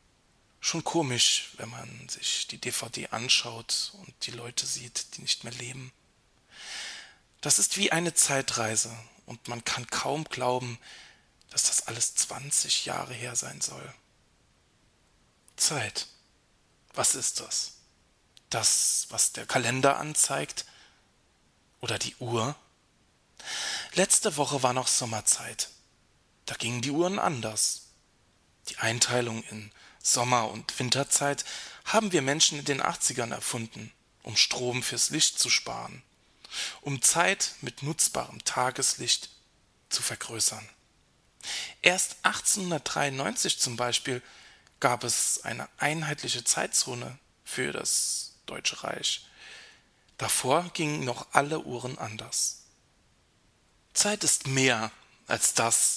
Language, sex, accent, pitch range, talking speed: German, male, German, 120-150 Hz, 115 wpm